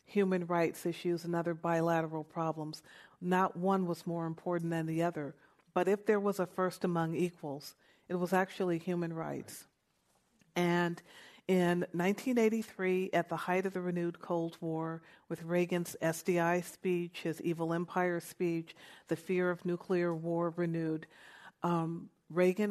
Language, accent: English, American